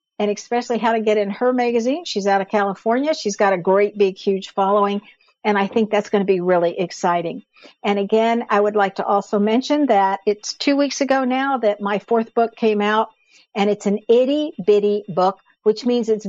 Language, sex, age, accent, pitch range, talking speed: English, female, 60-79, American, 200-235 Hz, 205 wpm